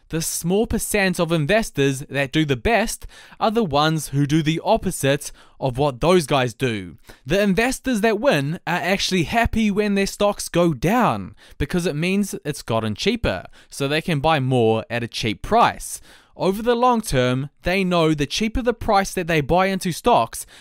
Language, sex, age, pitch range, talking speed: English, male, 20-39, 130-190 Hz, 185 wpm